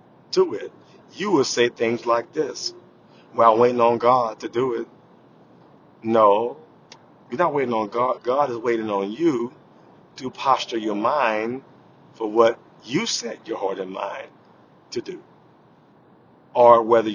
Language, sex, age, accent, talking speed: English, male, 50-69, American, 150 wpm